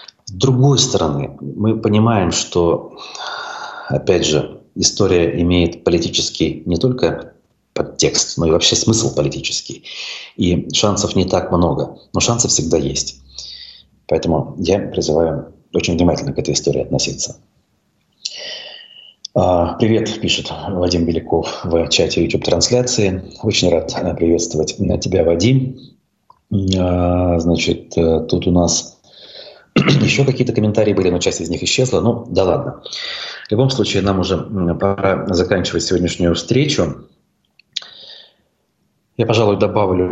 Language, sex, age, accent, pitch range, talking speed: Russian, male, 30-49, native, 85-105 Hz, 115 wpm